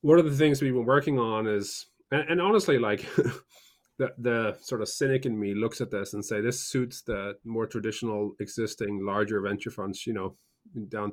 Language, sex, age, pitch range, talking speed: English, male, 30-49, 105-125 Hz, 205 wpm